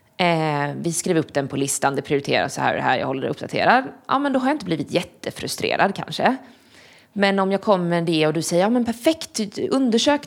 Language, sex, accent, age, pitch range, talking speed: Swedish, female, native, 20-39, 150-200 Hz, 230 wpm